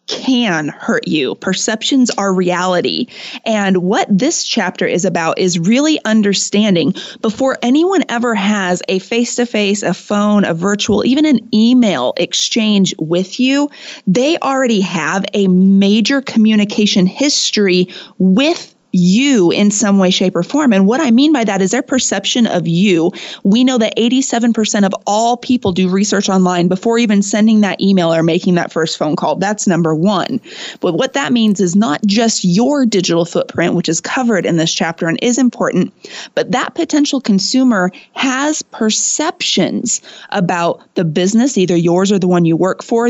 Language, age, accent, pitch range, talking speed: English, 30-49, American, 190-245 Hz, 165 wpm